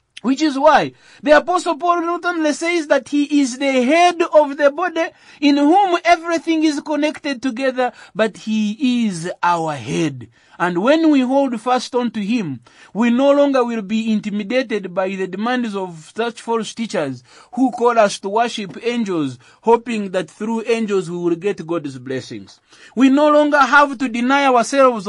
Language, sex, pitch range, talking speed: English, male, 205-280 Hz, 165 wpm